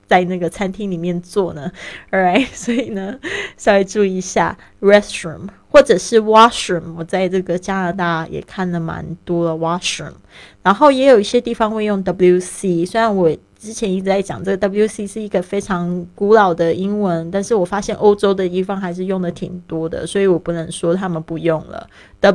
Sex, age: female, 20-39